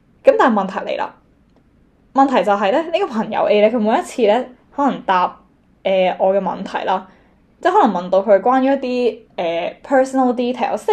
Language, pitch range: Chinese, 195-270 Hz